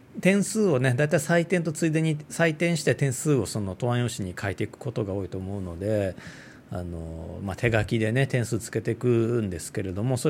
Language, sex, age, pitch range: Japanese, male, 40-59, 105-160 Hz